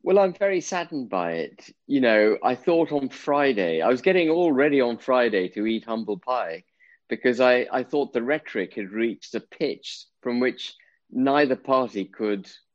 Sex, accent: male, British